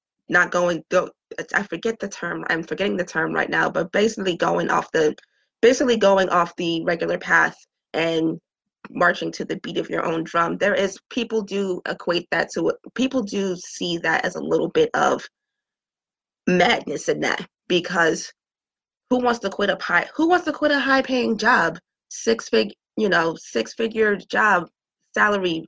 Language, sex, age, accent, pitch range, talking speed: English, female, 20-39, American, 175-220 Hz, 175 wpm